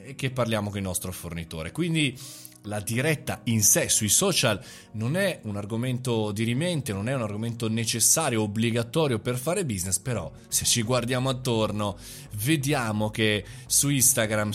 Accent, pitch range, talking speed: native, 105-135 Hz, 155 wpm